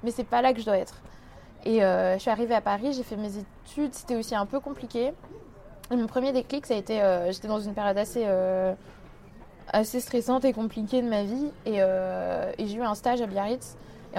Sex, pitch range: female, 200-235 Hz